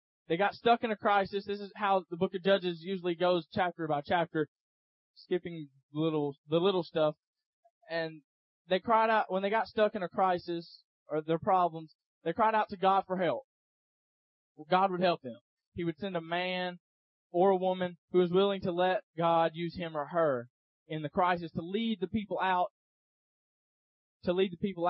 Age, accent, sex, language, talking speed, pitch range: 20-39, American, male, English, 190 wpm, 165-215 Hz